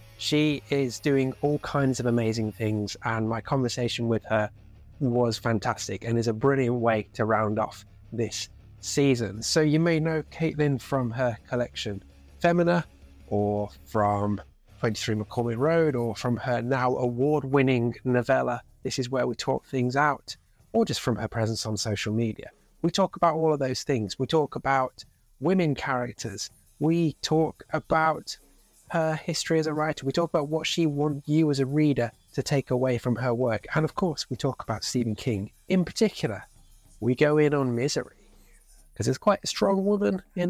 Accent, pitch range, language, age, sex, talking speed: British, 110-150 Hz, English, 30-49, male, 175 wpm